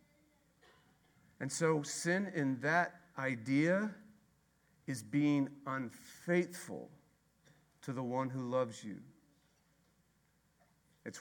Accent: American